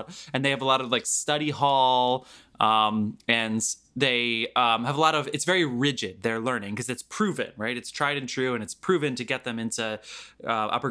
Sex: male